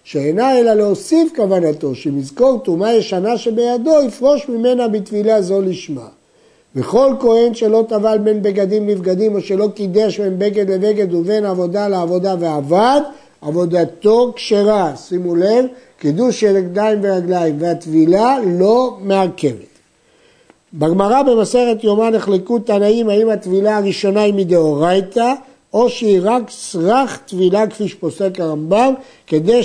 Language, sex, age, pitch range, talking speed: Hebrew, male, 60-79, 180-240 Hz, 120 wpm